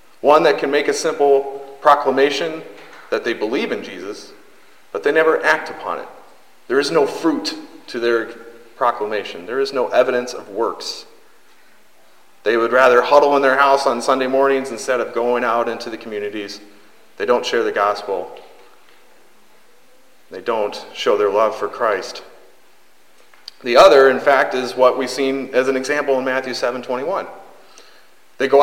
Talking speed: 160 wpm